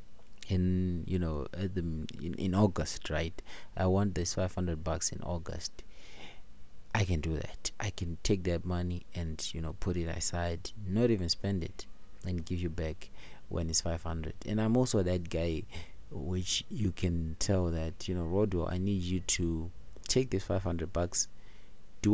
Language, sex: English, male